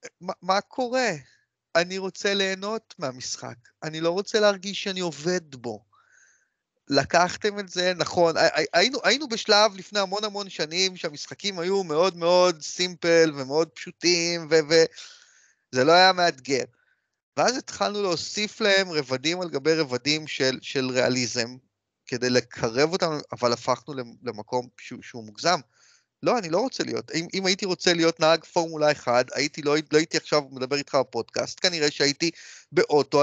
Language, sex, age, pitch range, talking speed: Hebrew, male, 30-49, 140-190 Hz, 145 wpm